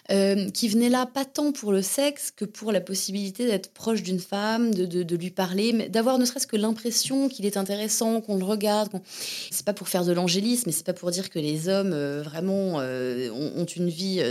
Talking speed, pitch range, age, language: 230 wpm, 180-215 Hz, 20-39, French